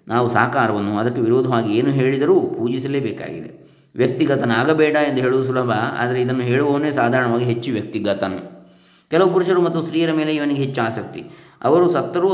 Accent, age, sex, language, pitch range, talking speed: native, 20-39, male, Kannada, 115-140 Hz, 130 wpm